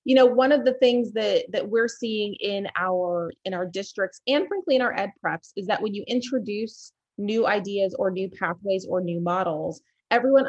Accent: American